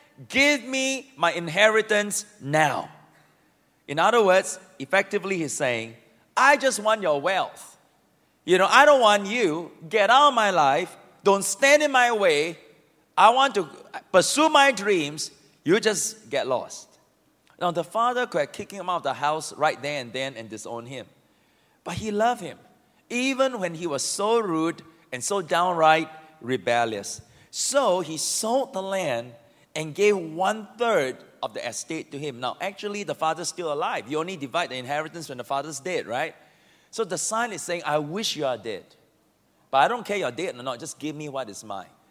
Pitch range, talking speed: 145-220 Hz, 180 wpm